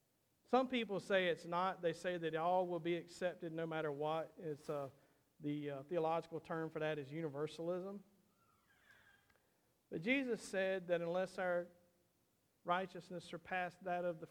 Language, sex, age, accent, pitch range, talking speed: English, male, 50-69, American, 155-185 Hz, 150 wpm